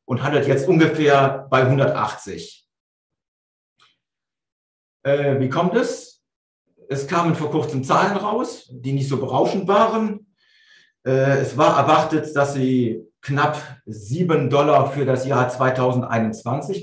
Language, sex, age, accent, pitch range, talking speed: German, male, 50-69, German, 125-160 Hz, 120 wpm